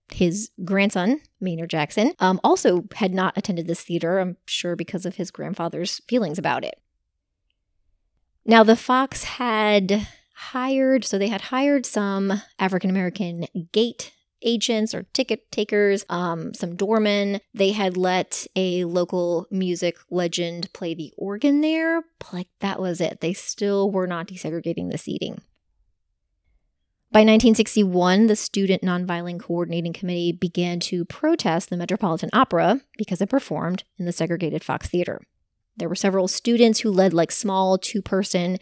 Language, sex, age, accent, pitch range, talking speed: English, female, 20-39, American, 175-220 Hz, 145 wpm